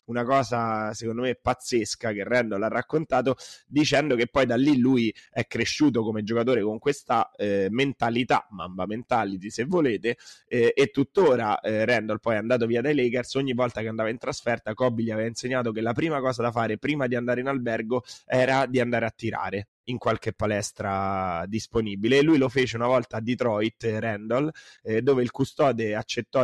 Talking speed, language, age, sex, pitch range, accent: 185 wpm, Italian, 20-39, male, 110-130 Hz, native